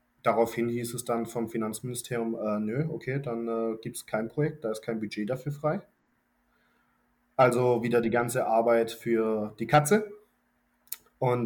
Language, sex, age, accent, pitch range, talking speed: German, male, 20-39, German, 115-125 Hz, 150 wpm